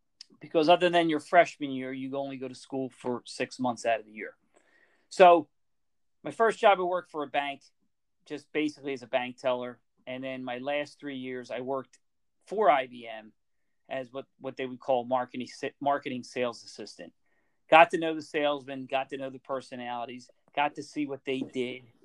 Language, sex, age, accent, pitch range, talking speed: English, male, 40-59, American, 130-150 Hz, 190 wpm